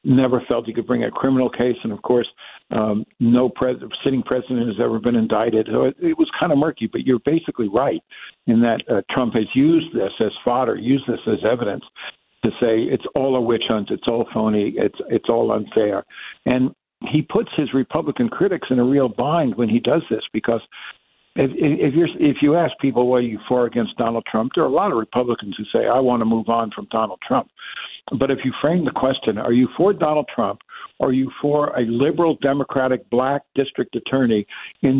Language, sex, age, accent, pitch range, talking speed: English, male, 60-79, American, 115-140 Hz, 215 wpm